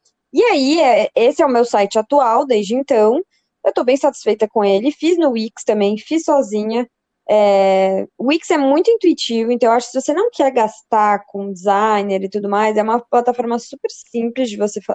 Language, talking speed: Portuguese, 195 wpm